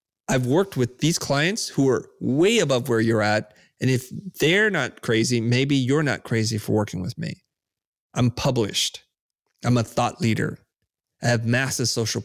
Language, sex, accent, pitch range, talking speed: English, male, American, 115-135 Hz, 170 wpm